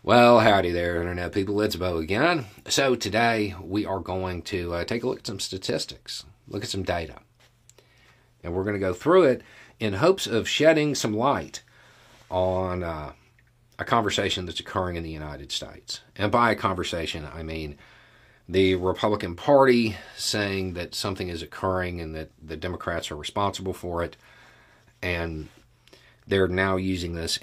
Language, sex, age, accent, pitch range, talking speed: English, male, 40-59, American, 85-115 Hz, 165 wpm